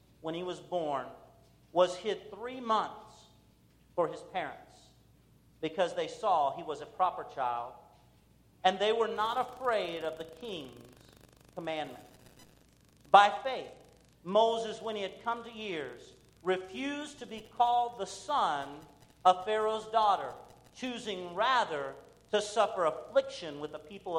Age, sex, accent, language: 50-69, male, American, English